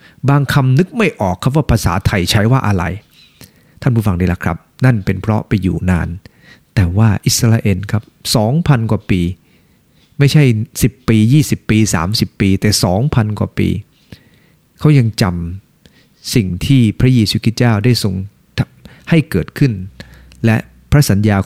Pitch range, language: 100-135 Hz, English